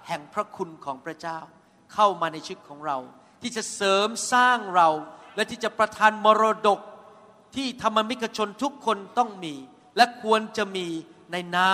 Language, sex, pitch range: Thai, male, 190-245 Hz